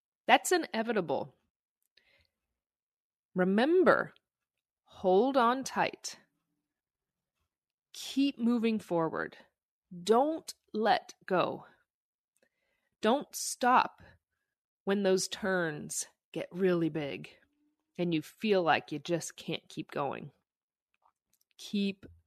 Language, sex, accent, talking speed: English, female, American, 80 wpm